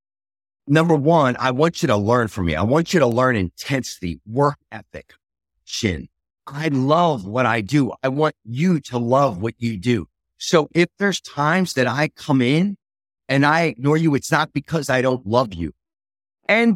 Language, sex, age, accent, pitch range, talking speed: English, male, 50-69, American, 105-155 Hz, 185 wpm